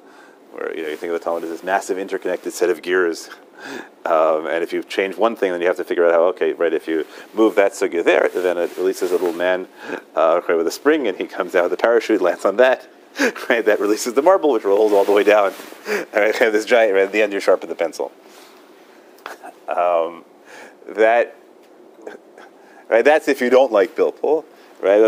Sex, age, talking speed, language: male, 30-49, 220 wpm, English